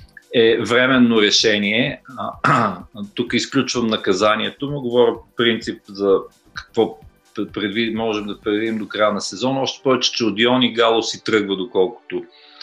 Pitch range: 105-125 Hz